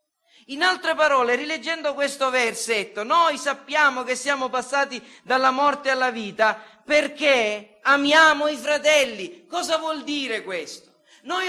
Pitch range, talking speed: 215-305 Hz, 125 wpm